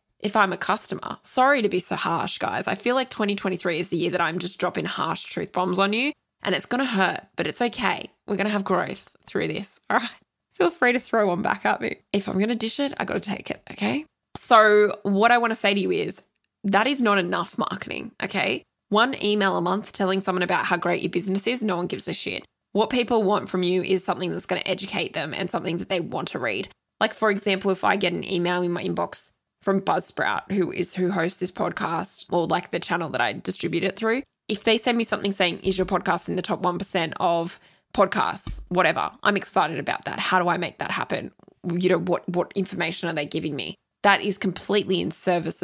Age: 10-29